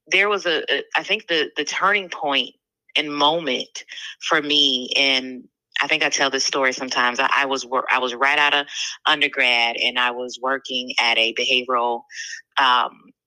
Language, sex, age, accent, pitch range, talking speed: English, female, 30-49, American, 125-145 Hz, 175 wpm